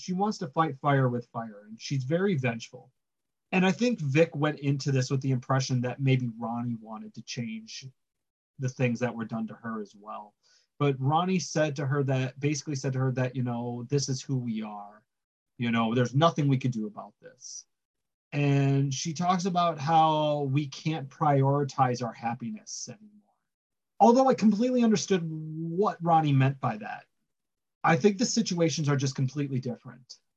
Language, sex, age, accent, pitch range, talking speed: English, male, 30-49, American, 130-170 Hz, 180 wpm